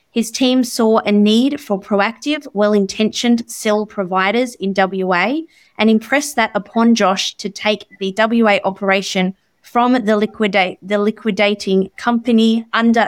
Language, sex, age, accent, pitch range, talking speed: English, female, 20-39, Australian, 195-230 Hz, 135 wpm